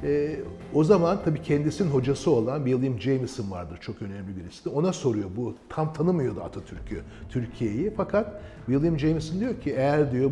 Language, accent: Turkish, native